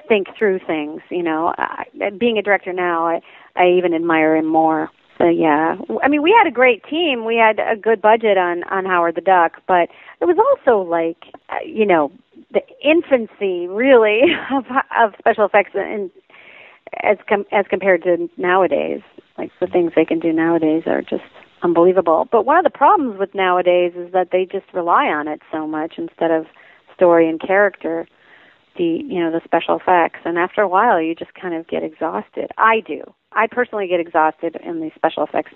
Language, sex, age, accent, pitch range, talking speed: English, female, 40-59, American, 170-220 Hz, 190 wpm